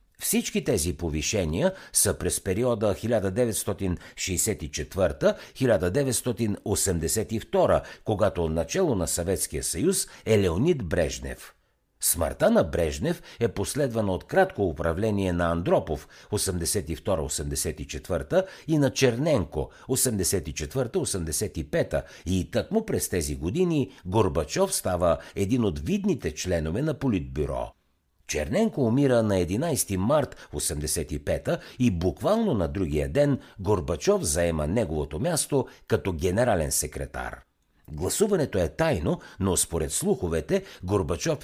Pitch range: 80-125 Hz